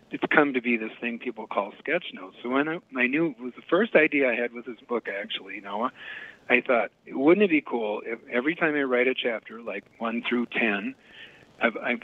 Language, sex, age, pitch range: English, male, 50-69, 110-140 Hz